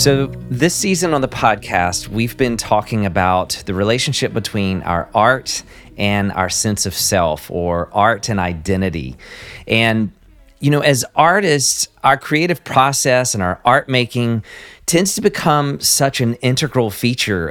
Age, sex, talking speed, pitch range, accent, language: 40-59, male, 145 wpm, 95-125 Hz, American, English